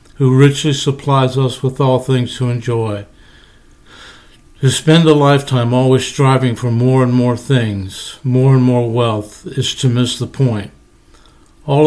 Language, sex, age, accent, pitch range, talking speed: English, male, 60-79, American, 120-135 Hz, 150 wpm